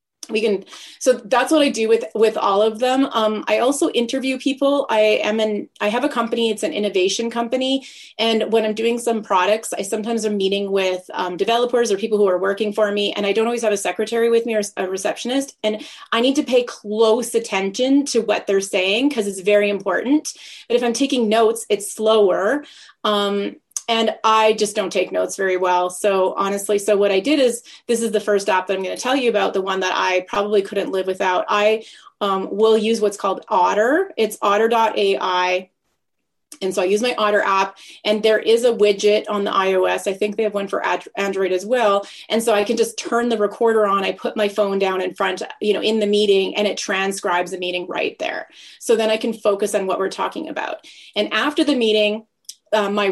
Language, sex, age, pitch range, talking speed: English, female, 30-49, 200-235 Hz, 220 wpm